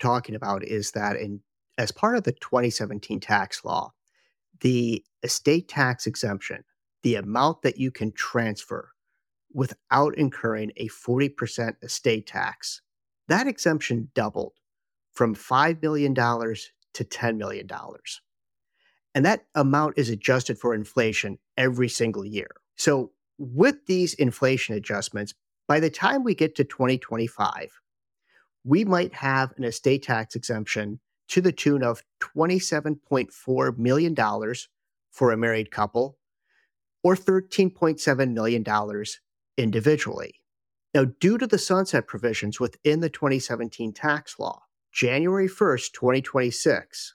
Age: 50-69